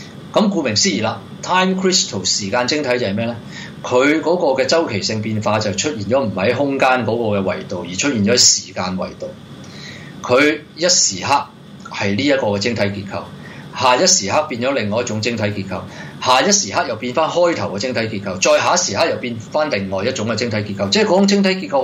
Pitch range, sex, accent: 100-145 Hz, male, native